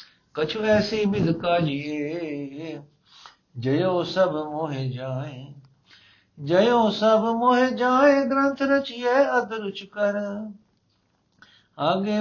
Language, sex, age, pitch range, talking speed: Punjabi, male, 50-69, 140-190 Hz, 90 wpm